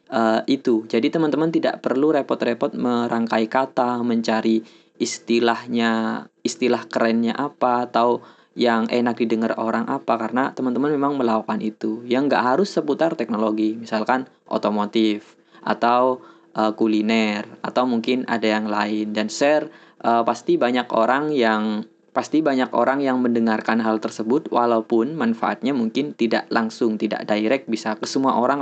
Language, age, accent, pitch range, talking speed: Indonesian, 20-39, native, 110-125 Hz, 135 wpm